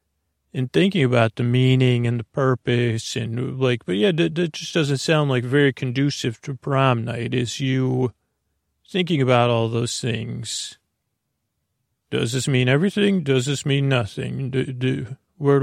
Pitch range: 125-145 Hz